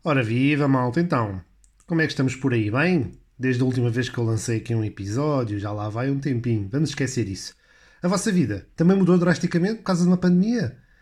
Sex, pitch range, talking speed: male, 115-160 Hz, 220 wpm